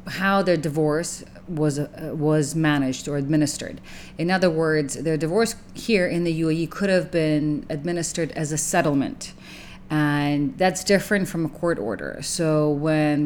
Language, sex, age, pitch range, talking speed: English, female, 40-59, 150-175 Hz, 155 wpm